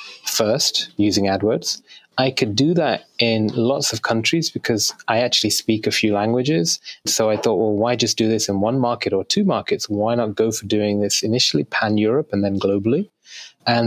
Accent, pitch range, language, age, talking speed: British, 105-125 Hz, English, 30-49, 195 wpm